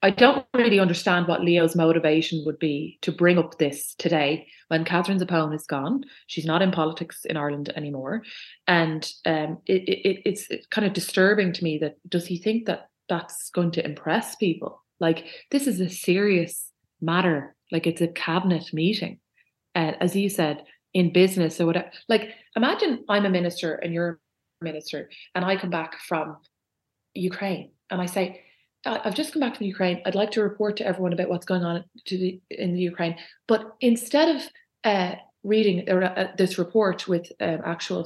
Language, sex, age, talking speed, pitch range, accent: English, female, 30-49, 180 wpm, 170-205 Hz, Irish